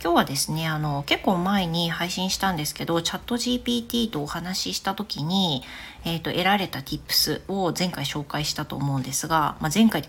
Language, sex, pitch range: Japanese, female, 145-200 Hz